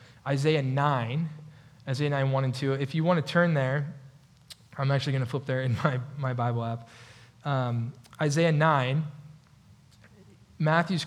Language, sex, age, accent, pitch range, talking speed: English, male, 20-39, American, 125-155 Hz, 150 wpm